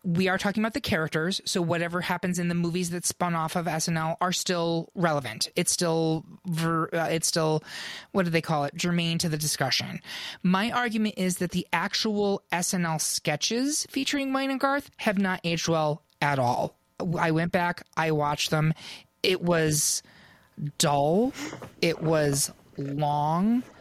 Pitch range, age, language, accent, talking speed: 165-205 Hz, 30-49, English, American, 165 wpm